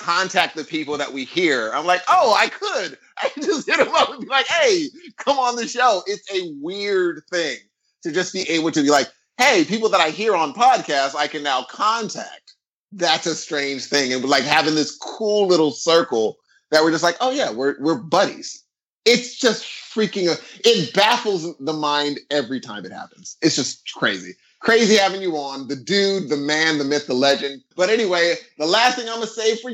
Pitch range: 150-220 Hz